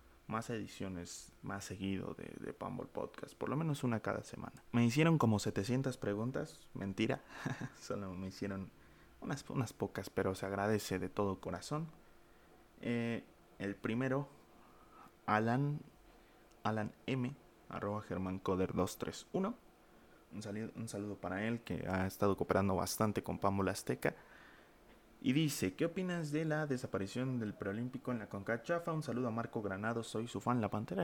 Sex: male